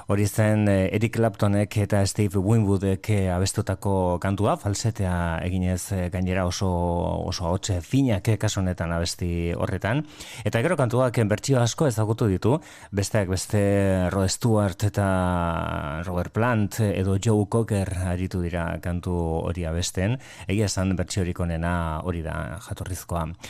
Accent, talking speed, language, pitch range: Spanish, 130 wpm, Spanish, 90-110 Hz